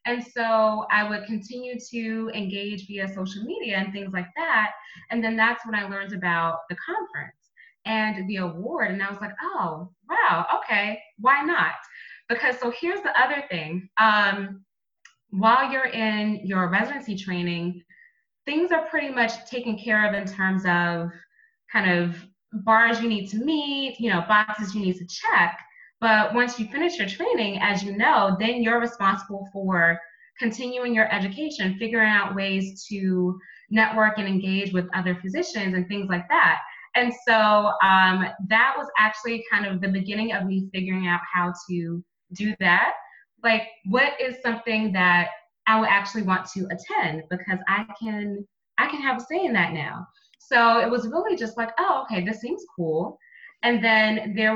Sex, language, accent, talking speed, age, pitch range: female, English, American, 170 wpm, 20-39, 190-235 Hz